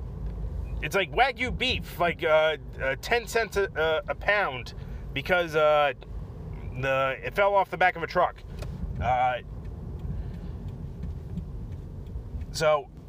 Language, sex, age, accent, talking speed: English, male, 30-49, American, 120 wpm